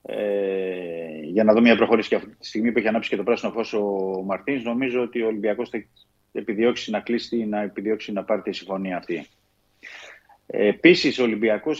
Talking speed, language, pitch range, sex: 200 wpm, Greek, 105-125 Hz, male